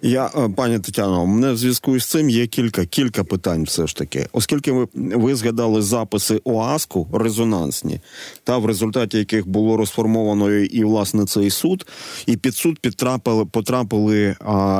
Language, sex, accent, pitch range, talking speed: Ukrainian, male, native, 95-120 Hz, 155 wpm